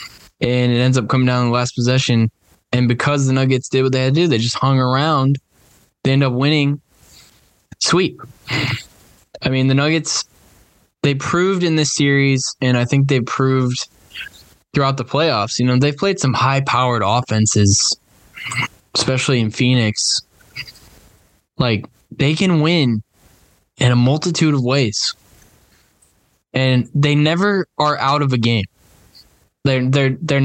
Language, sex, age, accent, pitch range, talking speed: English, male, 10-29, American, 125-150 Hz, 150 wpm